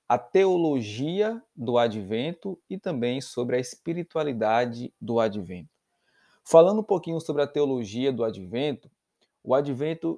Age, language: 20-39, Portuguese